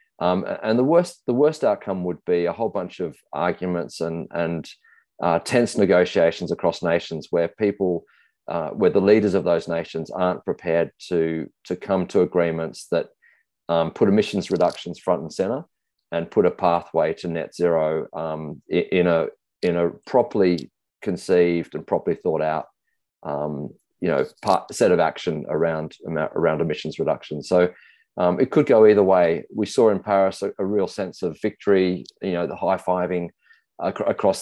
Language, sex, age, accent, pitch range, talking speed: English, male, 30-49, Australian, 85-100 Hz, 165 wpm